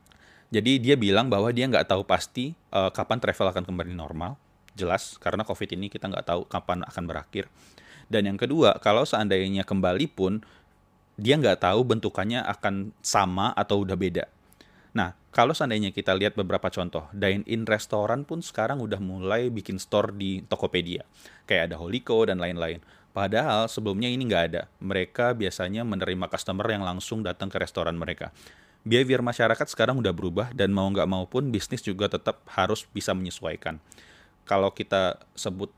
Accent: native